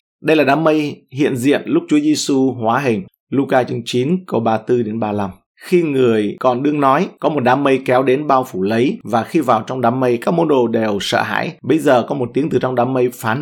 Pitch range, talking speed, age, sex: 115-145 Hz, 235 wpm, 20-39, male